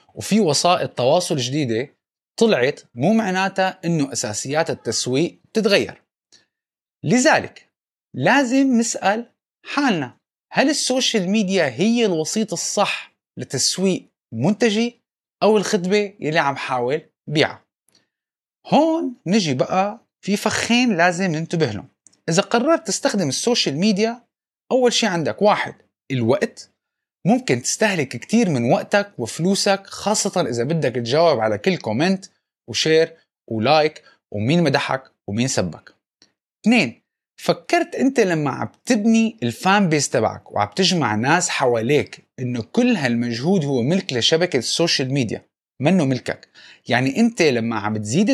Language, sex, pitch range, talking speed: Arabic, male, 140-220 Hz, 115 wpm